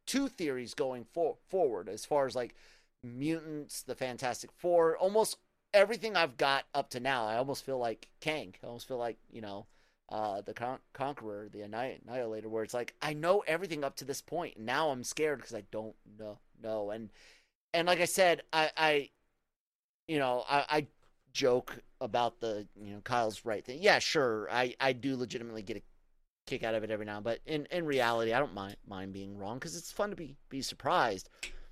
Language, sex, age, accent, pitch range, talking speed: English, male, 30-49, American, 110-155 Hz, 200 wpm